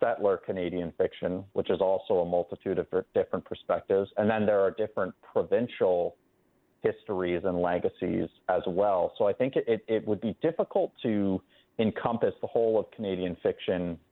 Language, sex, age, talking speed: English, male, 30-49, 155 wpm